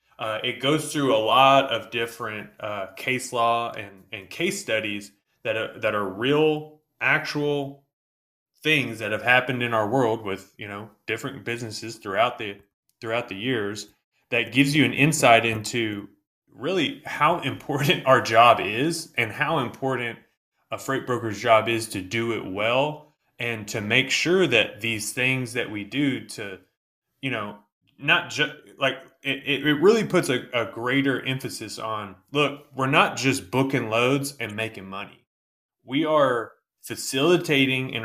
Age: 20-39